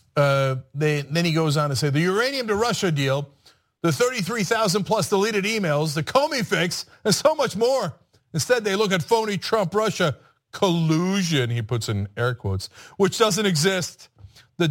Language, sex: English, male